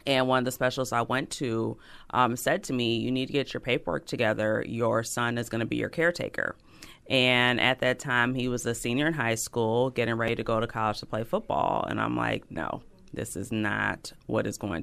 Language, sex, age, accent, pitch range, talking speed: English, female, 30-49, American, 115-130 Hz, 230 wpm